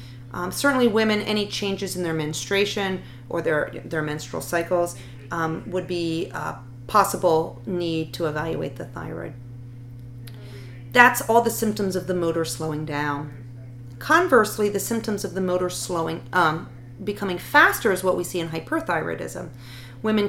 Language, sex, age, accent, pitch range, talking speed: English, female, 40-59, American, 130-200 Hz, 145 wpm